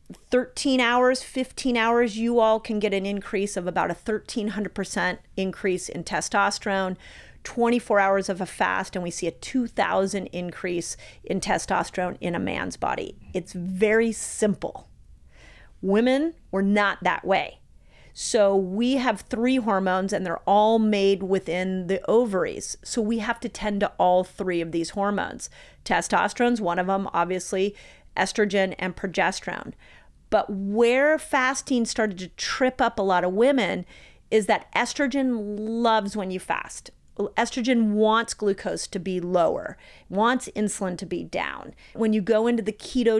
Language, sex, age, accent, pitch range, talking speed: English, female, 40-59, American, 190-225 Hz, 150 wpm